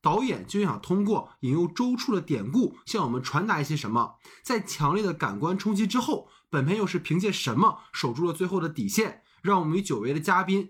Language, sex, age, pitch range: Chinese, male, 20-39, 155-210 Hz